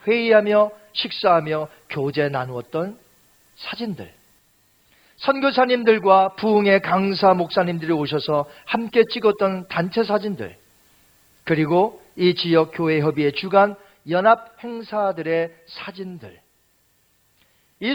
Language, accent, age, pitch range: Korean, native, 40-59, 175-265 Hz